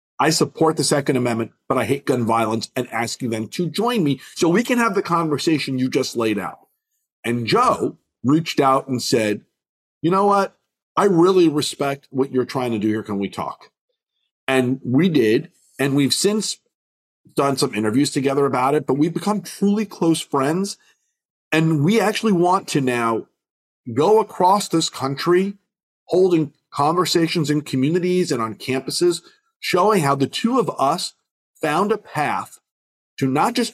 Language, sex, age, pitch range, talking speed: English, male, 40-59, 130-195 Hz, 170 wpm